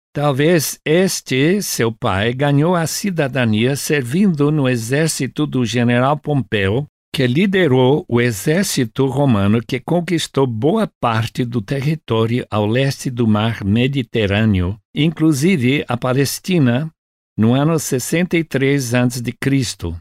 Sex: male